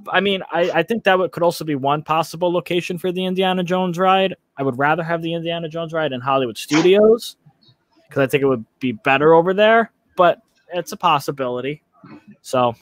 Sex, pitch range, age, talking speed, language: male, 130-170 Hz, 20-39, 200 wpm, English